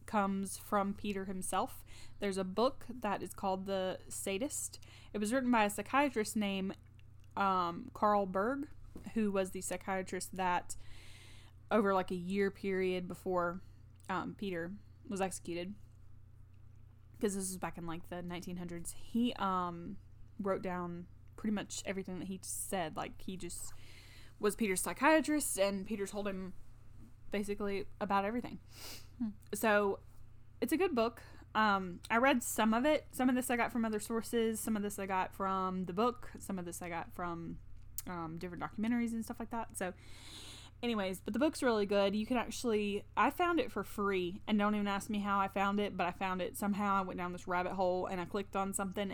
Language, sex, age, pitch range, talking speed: English, female, 10-29, 180-225 Hz, 180 wpm